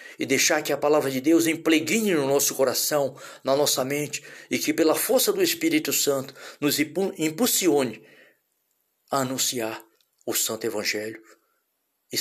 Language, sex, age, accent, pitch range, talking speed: English, male, 60-79, Brazilian, 130-190 Hz, 145 wpm